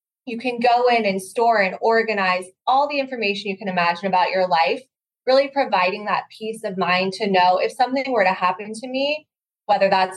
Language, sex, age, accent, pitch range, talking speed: English, female, 20-39, American, 190-240 Hz, 200 wpm